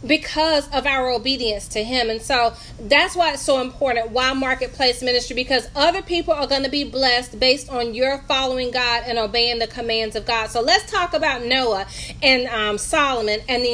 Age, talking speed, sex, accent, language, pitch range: 30-49, 195 wpm, female, American, English, 235-295 Hz